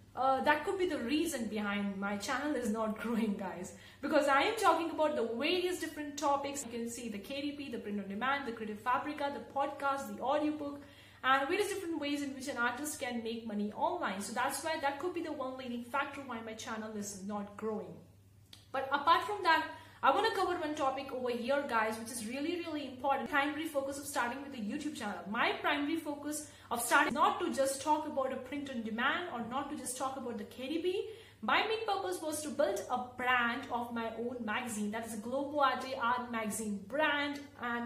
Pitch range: 235-300 Hz